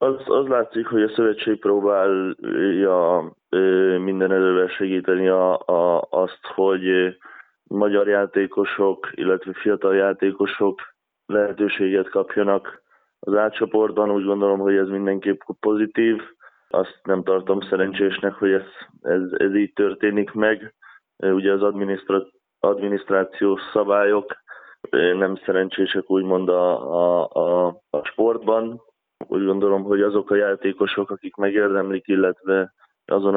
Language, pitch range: Hungarian, 95-100 Hz